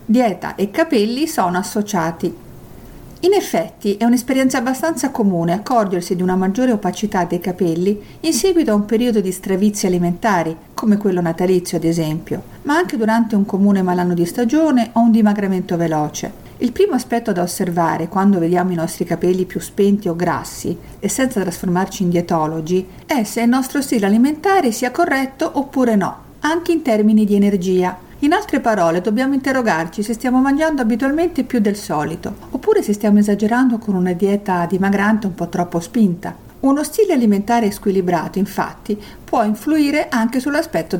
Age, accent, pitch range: 50-69, native, 180-245 Hz